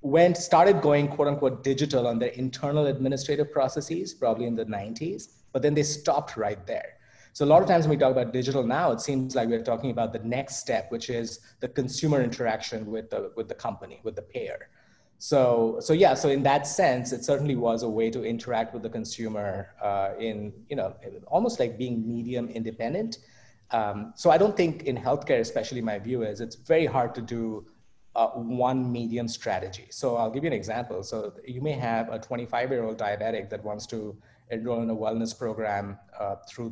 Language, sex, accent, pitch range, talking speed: English, male, Indian, 115-140 Hz, 205 wpm